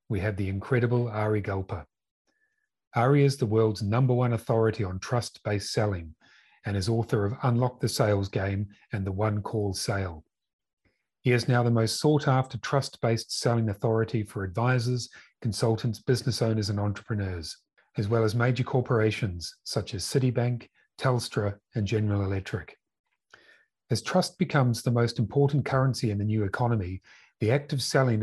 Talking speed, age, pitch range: 155 wpm, 40-59, 105-125 Hz